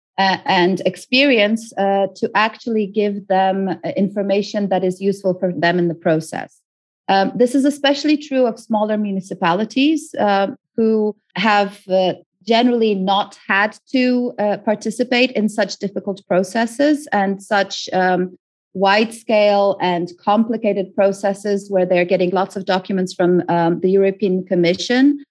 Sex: female